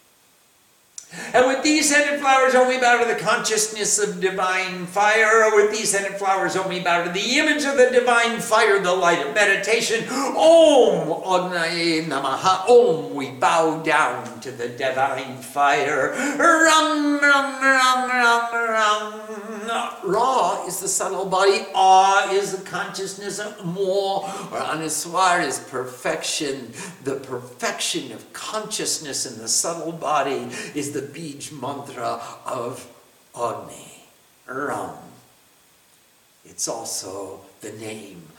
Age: 60-79